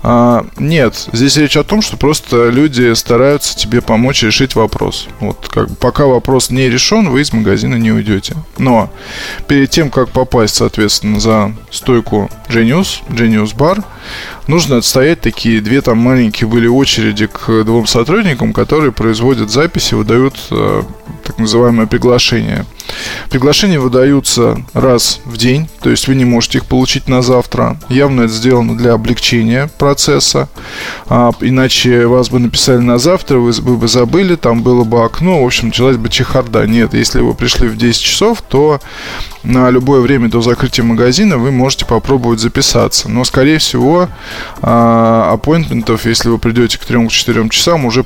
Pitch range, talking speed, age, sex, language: 115-135 Hz, 150 wpm, 20-39, male, Russian